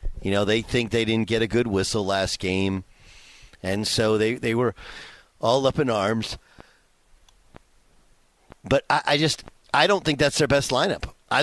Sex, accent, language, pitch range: male, American, English, 100-135 Hz